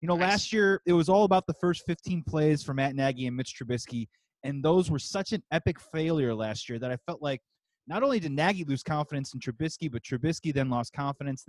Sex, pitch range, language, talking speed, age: male, 135-165 Hz, English, 235 wpm, 30-49